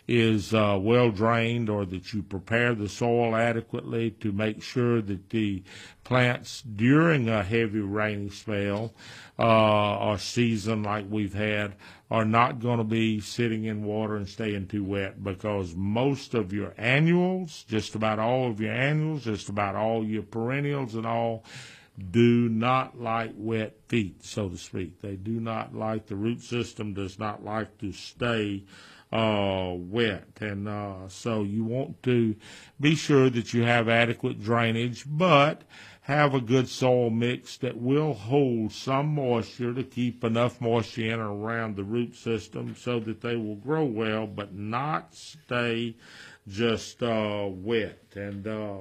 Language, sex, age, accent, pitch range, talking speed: English, male, 50-69, American, 105-120 Hz, 155 wpm